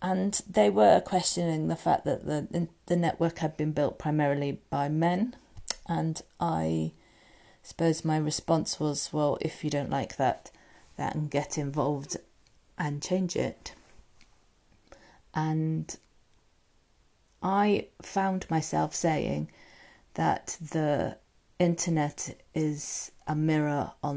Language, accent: English, British